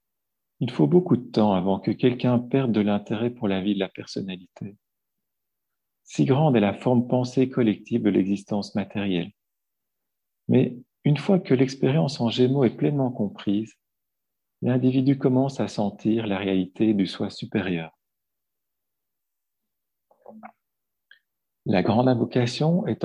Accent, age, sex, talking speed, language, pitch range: French, 50-69, male, 130 wpm, French, 105-130 Hz